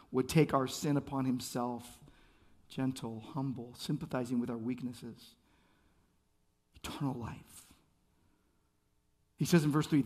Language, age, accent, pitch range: English, 50-69, American, 135-205 Hz